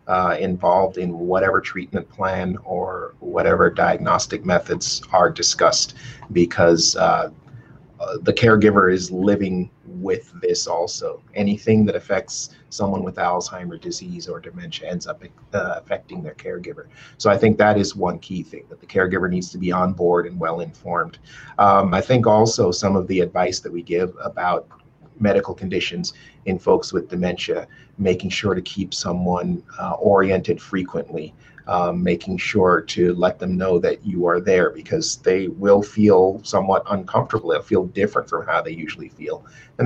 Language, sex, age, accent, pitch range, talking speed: English, male, 30-49, American, 90-120 Hz, 165 wpm